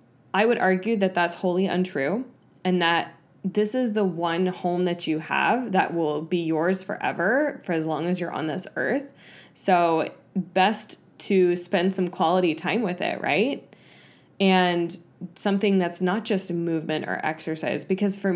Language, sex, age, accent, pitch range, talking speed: English, female, 10-29, American, 160-190 Hz, 165 wpm